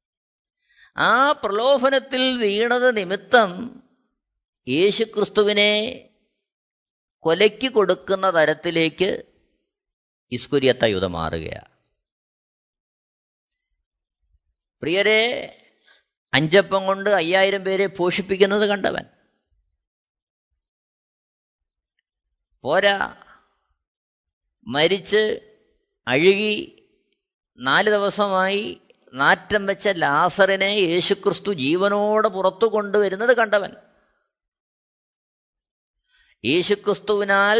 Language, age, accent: Malayalam, 20-39, native